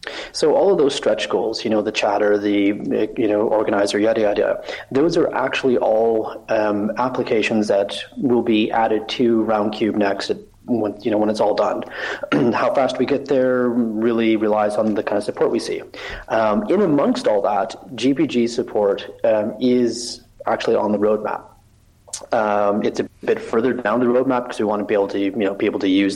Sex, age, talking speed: male, 30-49, 190 wpm